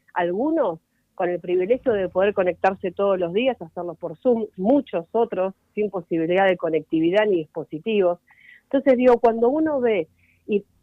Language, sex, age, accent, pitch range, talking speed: Spanish, female, 40-59, Argentinian, 170-215 Hz, 150 wpm